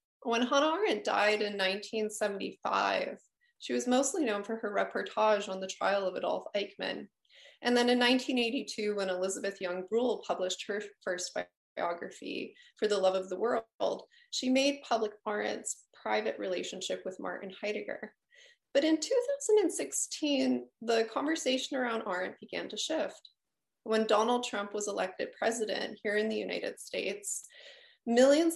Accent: American